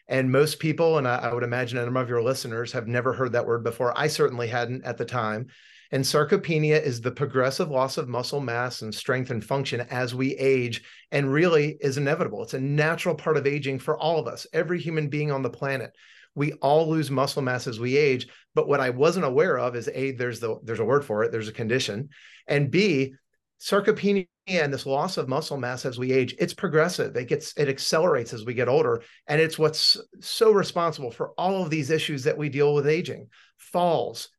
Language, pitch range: English, 125-160 Hz